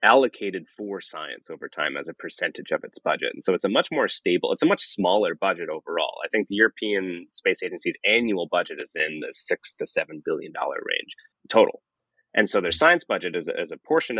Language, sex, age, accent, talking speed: English, male, 30-49, American, 210 wpm